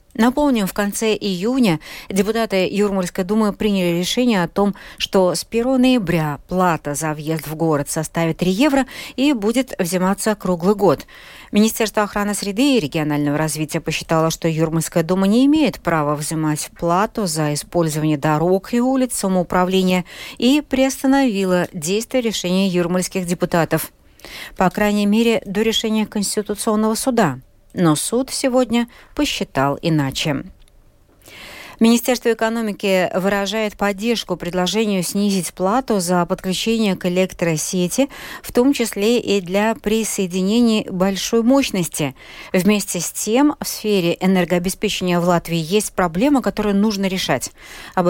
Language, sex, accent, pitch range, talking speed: Russian, female, native, 170-220 Hz, 125 wpm